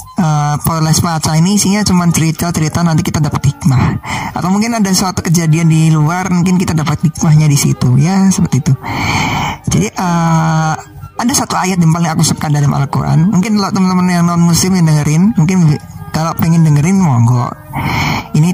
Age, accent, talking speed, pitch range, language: 20-39, native, 170 wpm, 145-170 Hz, Indonesian